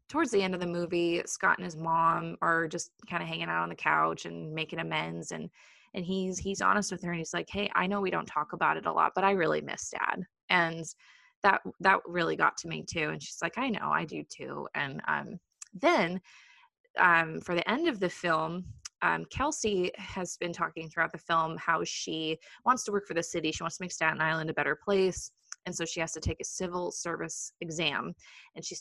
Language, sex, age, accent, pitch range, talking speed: English, female, 20-39, American, 160-195 Hz, 230 wpm